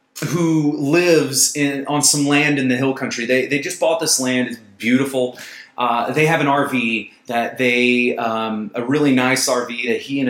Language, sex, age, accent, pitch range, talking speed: English, male, 30-49, American, 120-155 Hz, 190 wpm